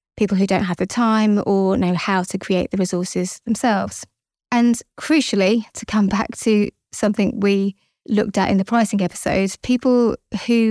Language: English